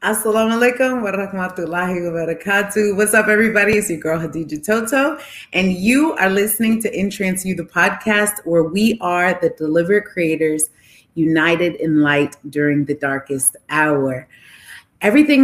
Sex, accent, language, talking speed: female, American, English, 130 wpm